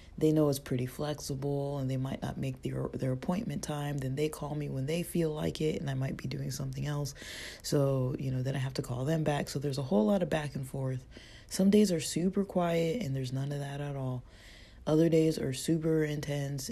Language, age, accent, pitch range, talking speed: English, 20-39, American, 125-145 Hz, 235 wpm